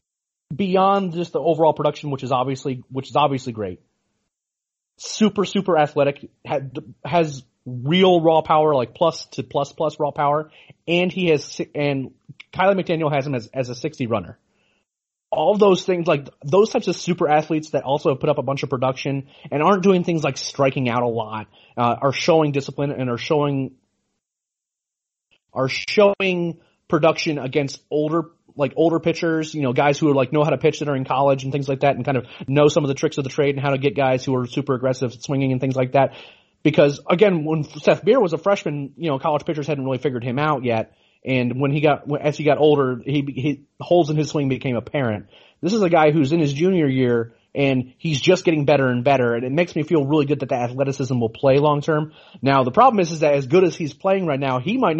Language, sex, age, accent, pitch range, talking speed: English, male, 30-49, American, 130-160 Hz, 225 wpm